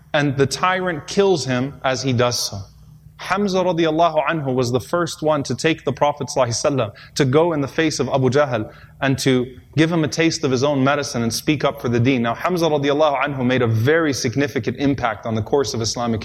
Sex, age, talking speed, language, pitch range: male, 20-39, 200 wpm, English, 120-150 Hz